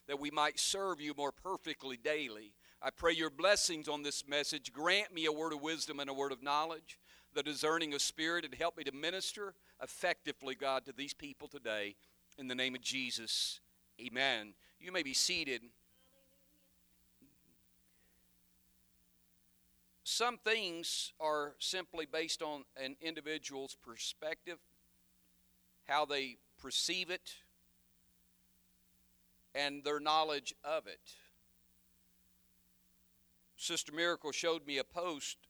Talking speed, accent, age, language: 125 wpm, American, 40-59, English